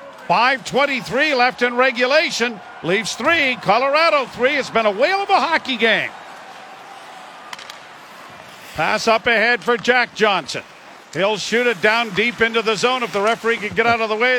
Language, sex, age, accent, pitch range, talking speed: English, male, 50-69, American, 205-245 Hz, 160 wpm